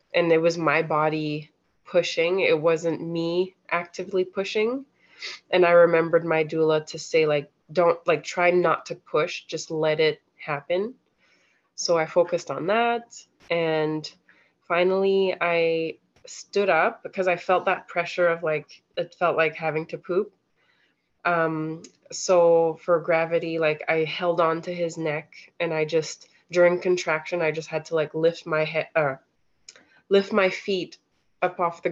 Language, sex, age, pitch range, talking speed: English, female, 20-39, 160-185 Hz, 155 wpm